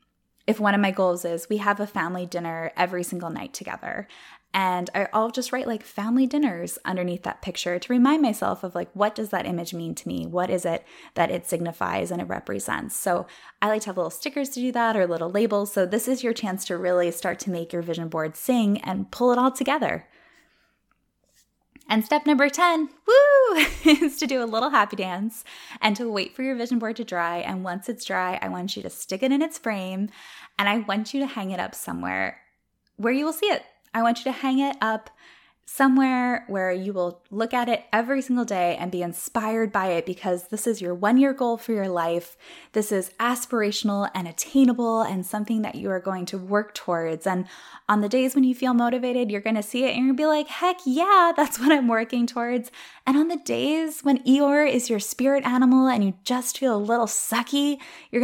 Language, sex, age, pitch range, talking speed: English, female, 10-29, 185-260 Hz, 220 wpm